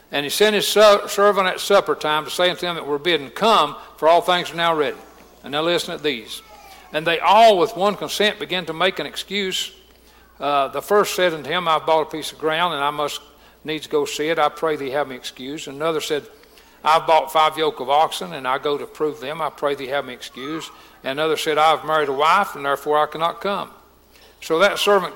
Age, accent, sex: 60-79, American, male